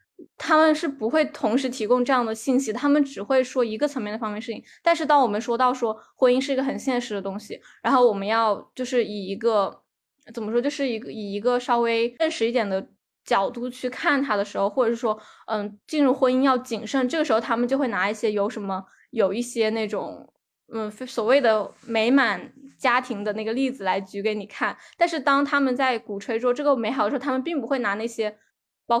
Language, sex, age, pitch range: Chinese, female, 20-39, 220-265 Hz